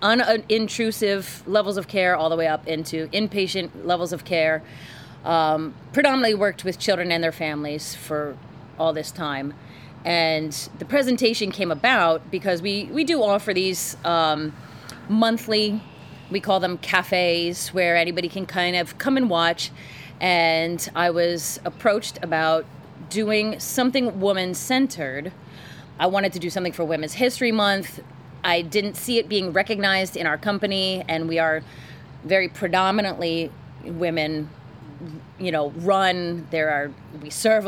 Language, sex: English, female